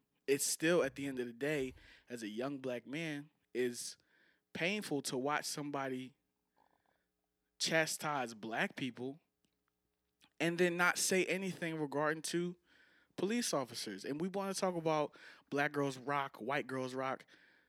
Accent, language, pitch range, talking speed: American, English, 130-180 Hz, 145 wpm